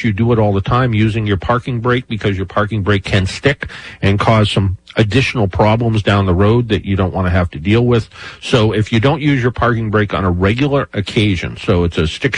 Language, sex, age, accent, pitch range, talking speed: English, male, 50-69, American, 95-130 Hz, 240 wpm